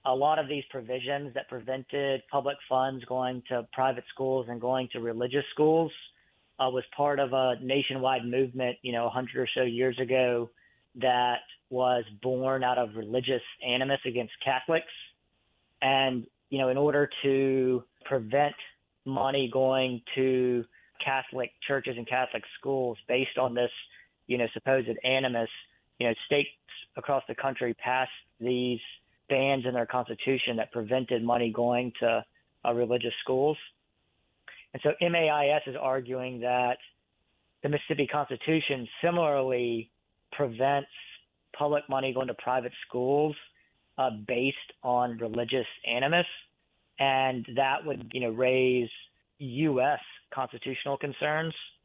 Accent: American